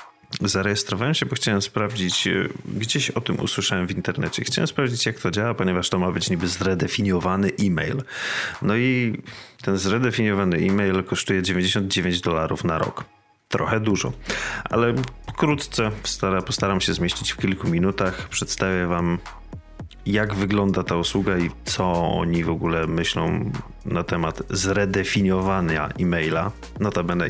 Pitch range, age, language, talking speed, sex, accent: 85-105 Hz, 30-49, Polish, 130 wpm, male, native